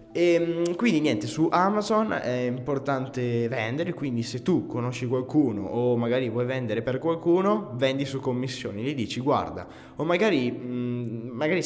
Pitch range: 105-135 Hz